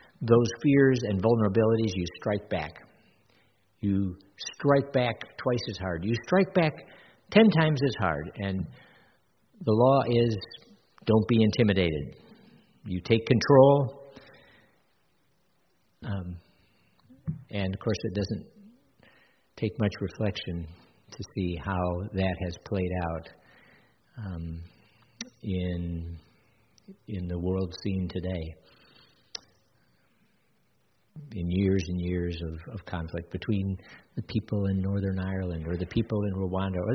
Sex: male